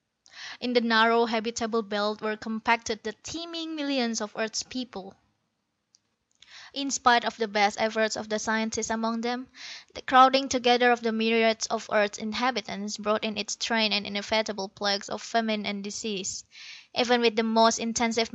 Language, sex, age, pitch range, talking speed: English, female, 20-39, 215-245 Hz, 160 wpm